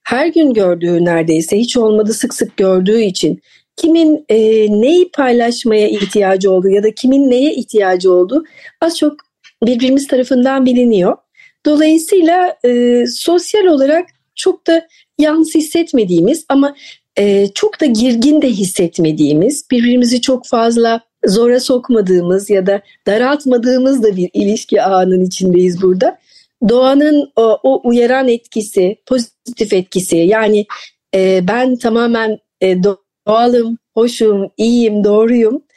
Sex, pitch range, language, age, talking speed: female, 200-265 Hz, Turkish, 40-59, 120 wpm